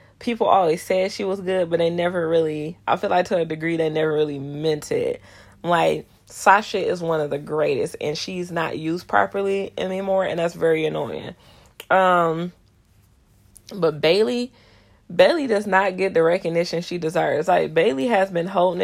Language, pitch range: English, 160-190 Hz